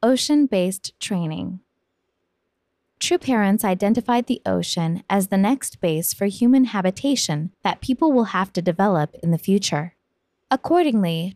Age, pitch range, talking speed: 20-39, 175-240 Hz, 125 wpm